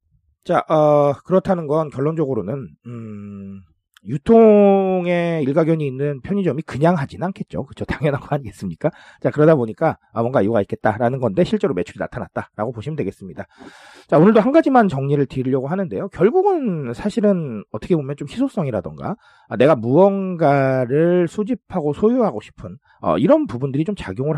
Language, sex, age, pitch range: Korean, male, 40-59, 140-215 Hz